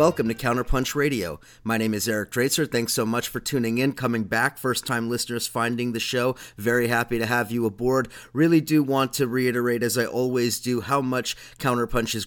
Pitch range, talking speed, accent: 115-135 Hz, 200 wpm, American